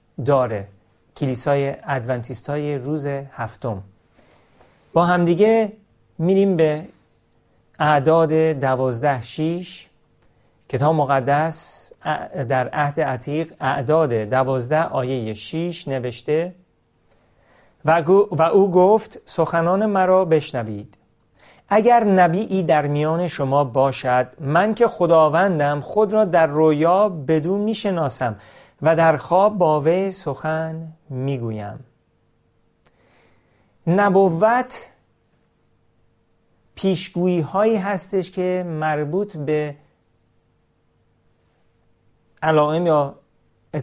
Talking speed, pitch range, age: 85 wpm, 135-175 Hz, 40-59